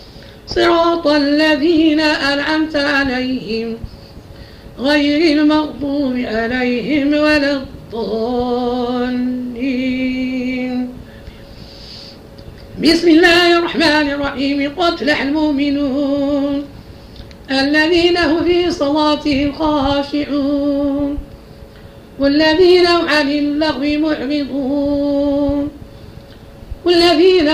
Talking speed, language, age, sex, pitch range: 55 wpm, Arabic, 50-69, female, 275-310 Hz